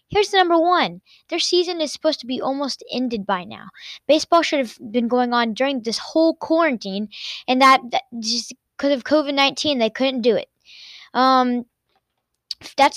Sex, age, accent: female, 10-29, American